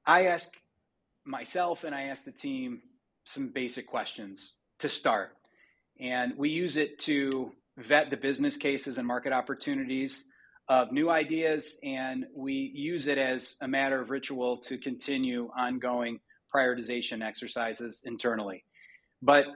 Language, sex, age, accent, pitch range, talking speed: English, male, 30-49, American, 125-155 Hz, 135 wpm